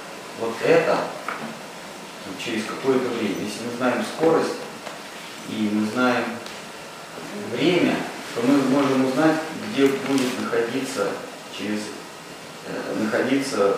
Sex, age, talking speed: male, 30-49, 90 wpm